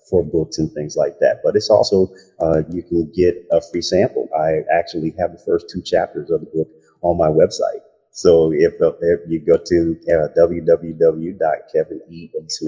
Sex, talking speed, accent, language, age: male, 170 wpm, American, English, 30-49